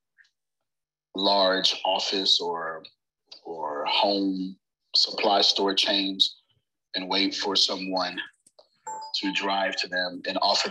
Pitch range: 95-130 Hz